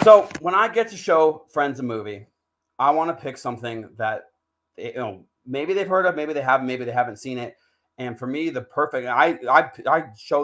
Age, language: 30-49, English